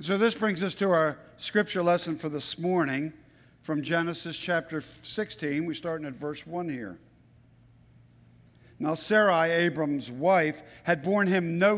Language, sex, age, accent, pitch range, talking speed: English, male, 50-69, American, 145-195 Hz, 150 wpm